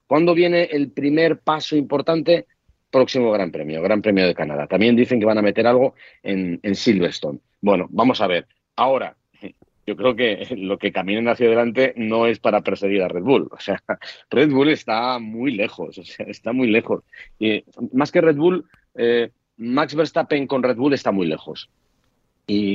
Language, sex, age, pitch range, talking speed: Spanish, male, 40-59, 95-130 Hz, 185 wpm